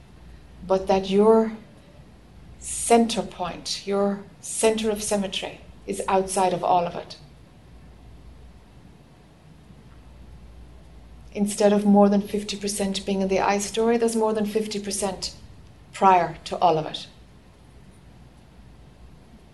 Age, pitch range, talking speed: 60-79, 175-200 Hz, 105 wpm